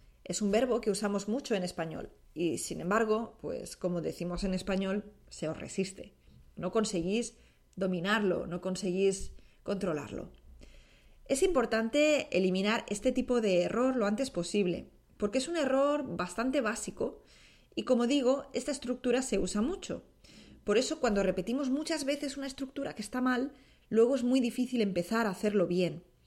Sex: female